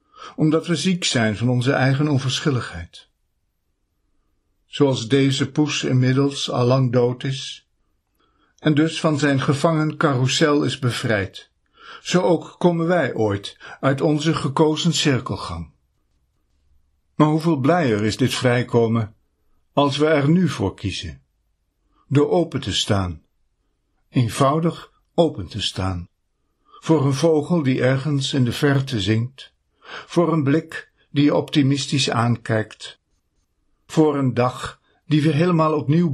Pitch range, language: 110-155 Hz, Dutch